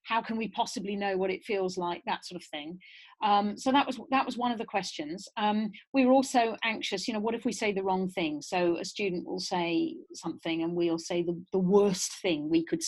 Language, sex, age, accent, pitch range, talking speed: English, female, 40-59, British, 175-220 Hz, 240 wpm